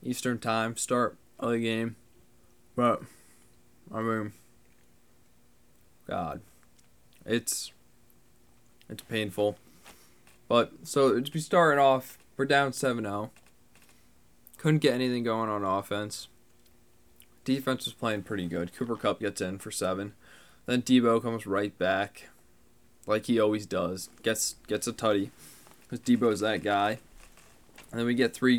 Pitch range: 100-120 Hz